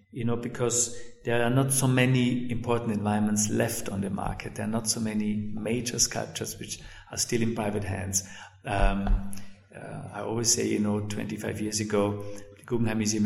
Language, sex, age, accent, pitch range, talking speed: English, male, 50-69, German, 100-115 Hz, 180 wpm